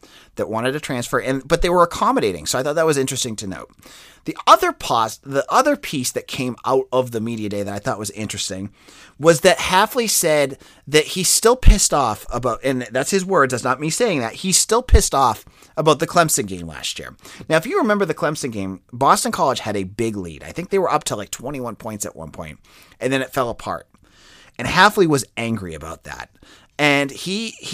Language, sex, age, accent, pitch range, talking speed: English, male, 30-49, American, 115-170 Hz, 220 wpm